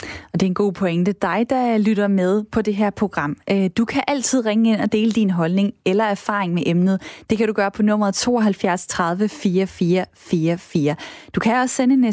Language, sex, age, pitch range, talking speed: Danish, female, 20-39, 195-255 Hz, 215 wpm